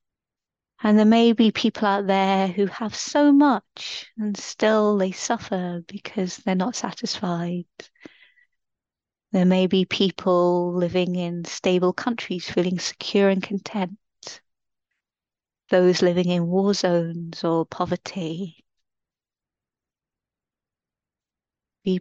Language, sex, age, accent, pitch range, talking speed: English, female, 30-49, British, 175-210 Hz, 105 wpm